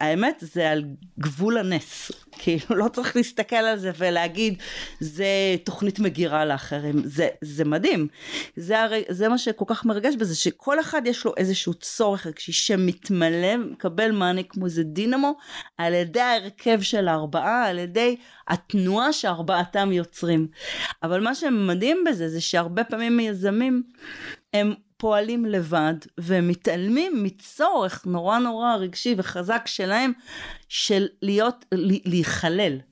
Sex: female